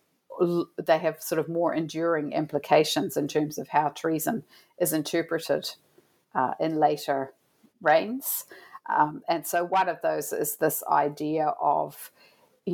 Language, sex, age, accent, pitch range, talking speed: English, female, 50-69, Australian, 150-175 Hz, 135 wpm